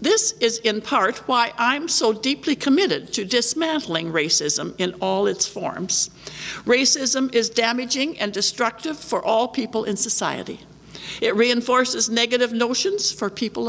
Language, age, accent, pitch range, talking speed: English, 60-79, American, 180-245 Hz, 140 wpm